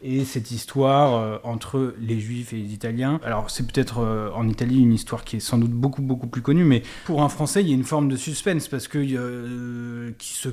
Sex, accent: male, French